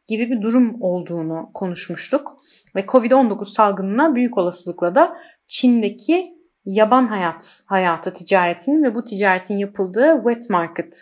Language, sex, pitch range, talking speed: Turkish, female, 190-255 Hz, 120 wpm